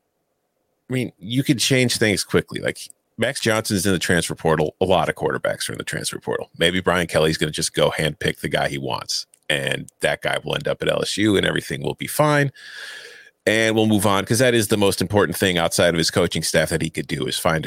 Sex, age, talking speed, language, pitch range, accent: male, 30-49, 245 wpm, English, 95-120 Hz, American